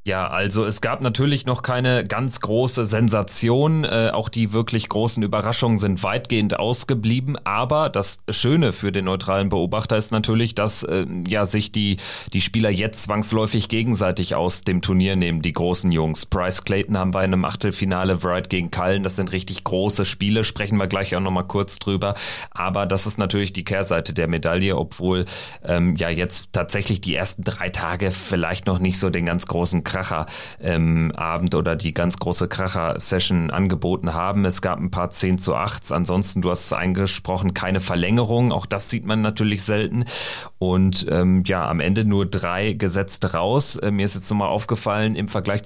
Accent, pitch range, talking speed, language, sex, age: German, 95-110 Hz, 180 wpm, German, male, 30-49